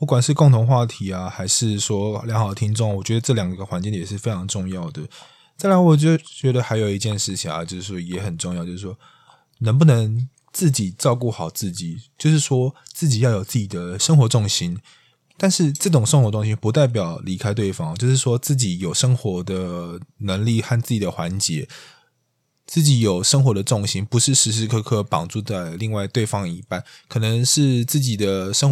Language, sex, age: Chinese, male, 20-39